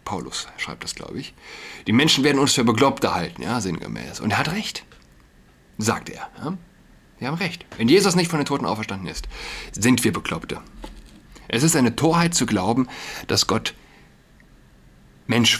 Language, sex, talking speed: German, male, 165 wpm